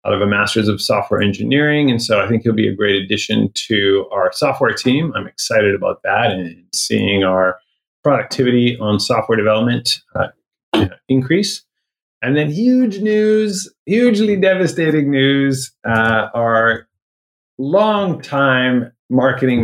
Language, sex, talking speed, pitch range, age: English, male, 135 wpm, 105-140 Hz, 30-49